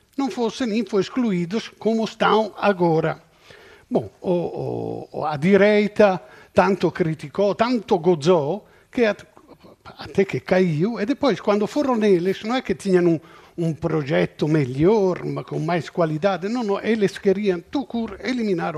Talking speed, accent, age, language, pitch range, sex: 135 wpm, Italian, 50-69, Portuguese, 165-220 Hz, male